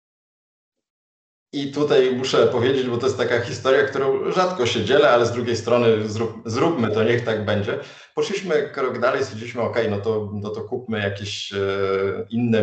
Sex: male